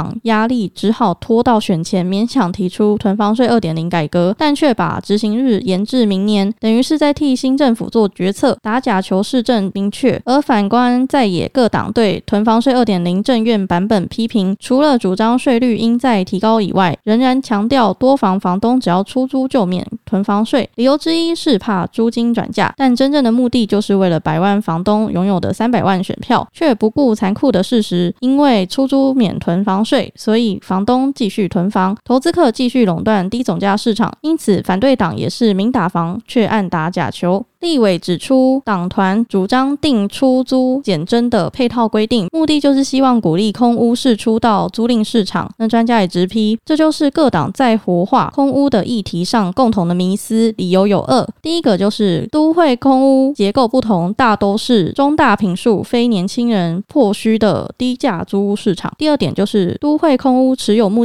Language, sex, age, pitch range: Chinese, female, 20-39, 195-255 Hz